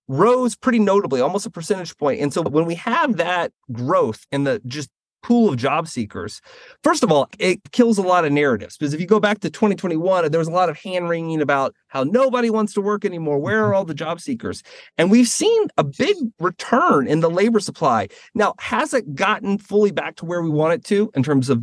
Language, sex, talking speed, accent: English, male, 225 wpm, American